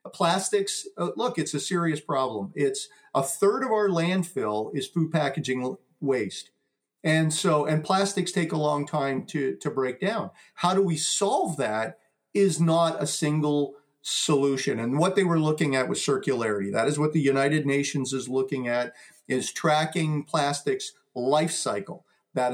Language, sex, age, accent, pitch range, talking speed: English, male, 50-69, American, 130-165 Hz, 165 wpm